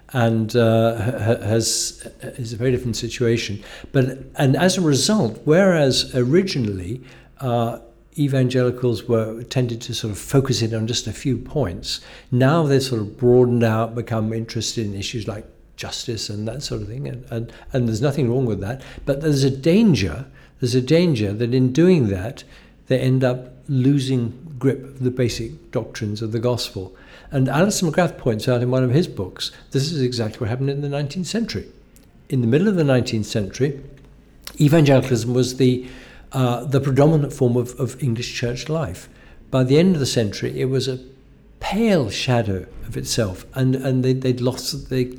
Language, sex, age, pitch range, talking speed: English, male, 60-79, 115-140 Hz, 180 wpm